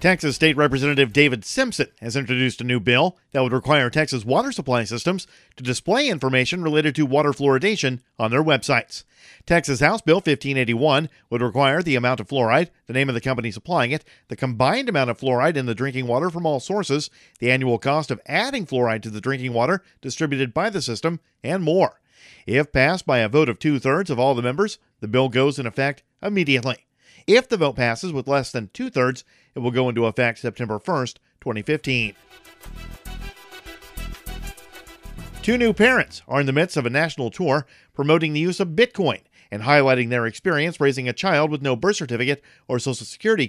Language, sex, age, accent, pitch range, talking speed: English, male, 40-59, American, 125-155 Hz, 185 wpm